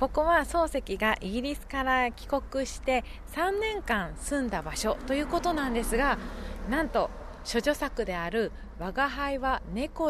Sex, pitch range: female, 200-280 Hz